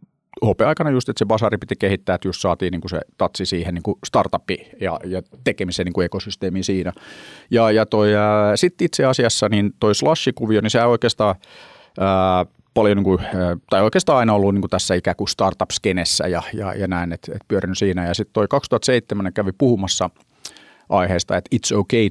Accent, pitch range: native, 90-110 Hz